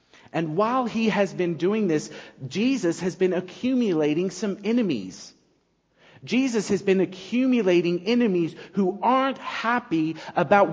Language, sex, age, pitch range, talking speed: English, male, 40-59, 135-215 Hz, 125 wpm